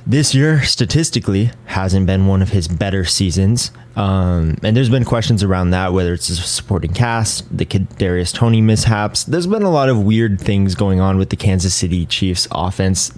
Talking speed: 185 wpm